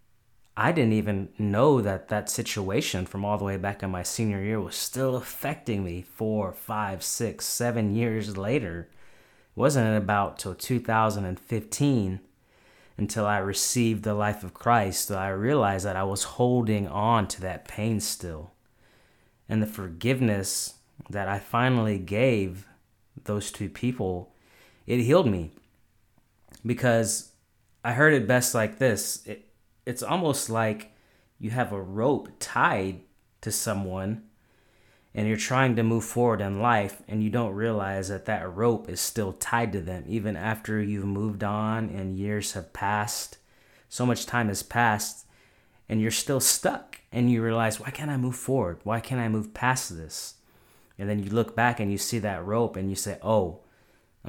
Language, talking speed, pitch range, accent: English, 160 wpm, 100-115 Hz, American